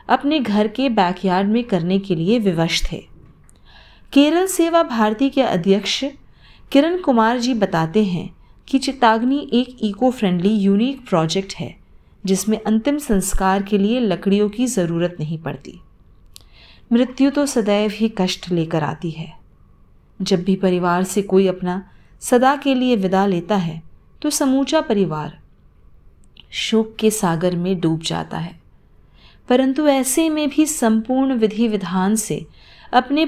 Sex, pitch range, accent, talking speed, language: female, 175-245 Hz, native, 140 wpm, Hindi